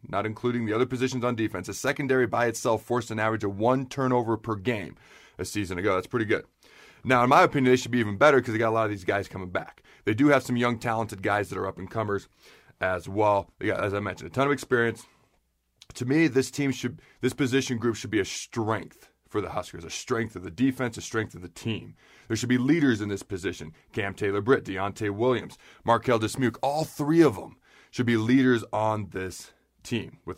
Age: 30-49